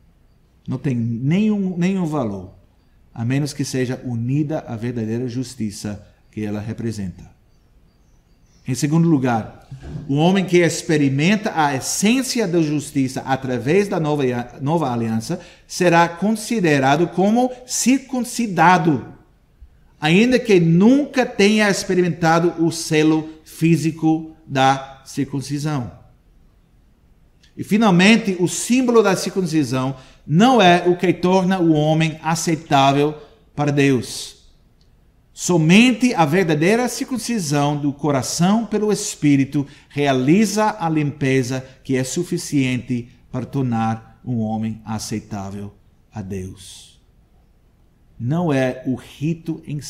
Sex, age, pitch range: male, 50-69, 115-175 Hz